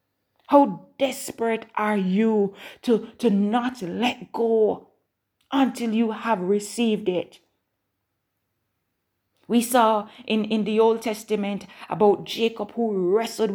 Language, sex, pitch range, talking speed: English, female, 205-260 Hz, 110 wpm